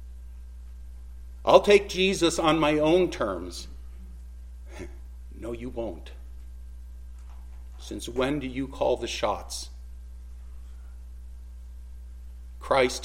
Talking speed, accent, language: 85 wpm, American, English